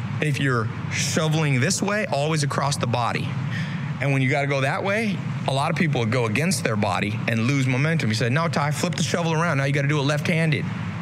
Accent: American